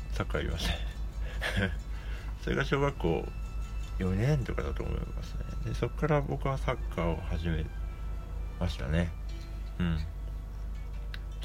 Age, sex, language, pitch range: 60-79, male, Japanese, 80-110 Hz